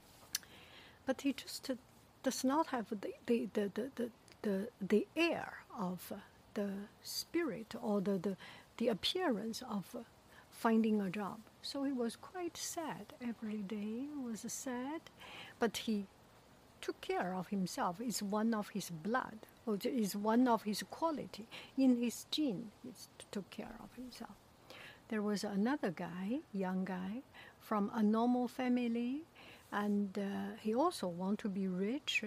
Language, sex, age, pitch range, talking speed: English, female, 60-79, 205-245 Hz, 155 wpm